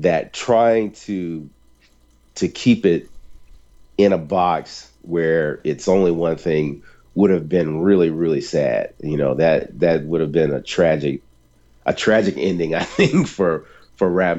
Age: 40-59